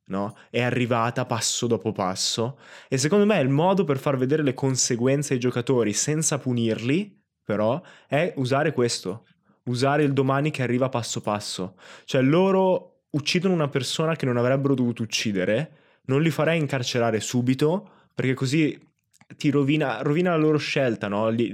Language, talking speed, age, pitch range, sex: Italian, 155 wpm, 20-39, 115-140 Hz, male